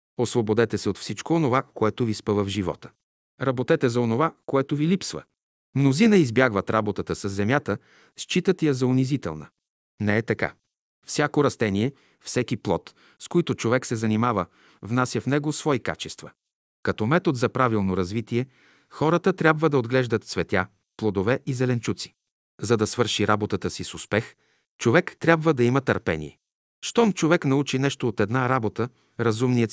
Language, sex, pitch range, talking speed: Bulgarian, male, 105-135 Hz, 150 wpm